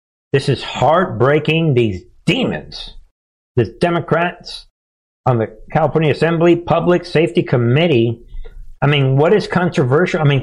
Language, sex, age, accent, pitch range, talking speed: English, male, 50-69, American, 110-155 Hz, 120 wpm